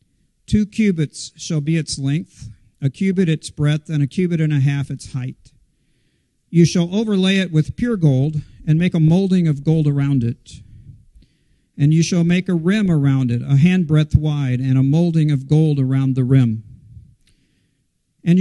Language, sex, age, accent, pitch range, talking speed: English, male, 50-69, American, 130-175 Hz, 175 wpm